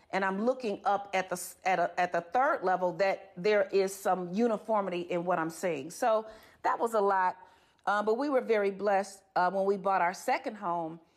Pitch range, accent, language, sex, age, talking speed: 180-220 Hz, American, English, female, 40-59, 210 wpm